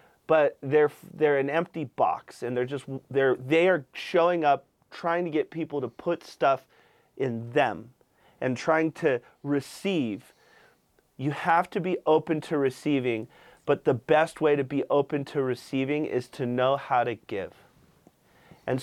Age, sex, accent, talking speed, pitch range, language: 30-49, male, American, 160 wpm, 135-165 Hz, English